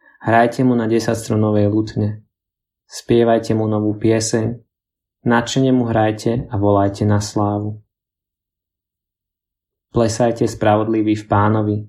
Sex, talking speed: male, 100 wpm